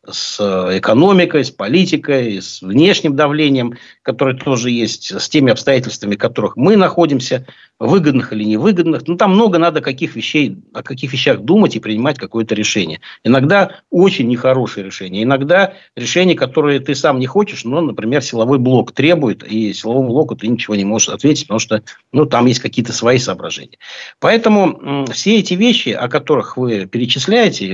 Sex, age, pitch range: male, 60-79, 115-170 Hz